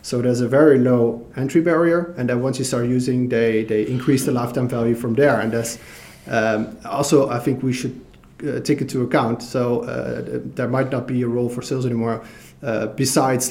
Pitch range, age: 115-140 Hz, 30-49